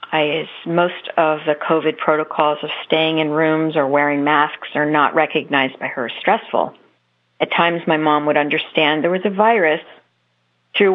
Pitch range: 145-170 Hz